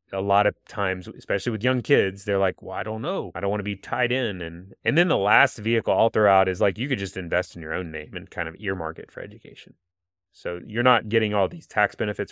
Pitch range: 90-120 Hz